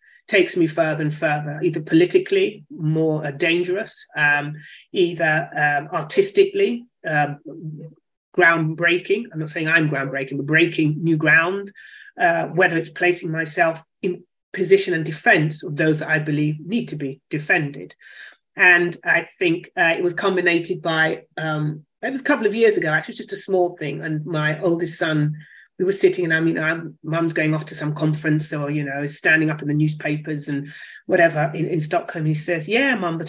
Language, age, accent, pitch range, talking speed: English, 30-49, British, 155-185 Hz, 180 wpm